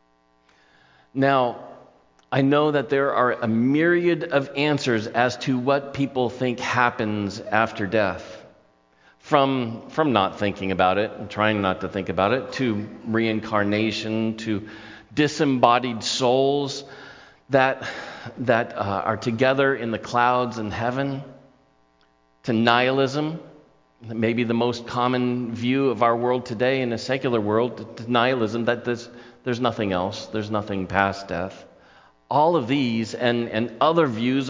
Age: 40-59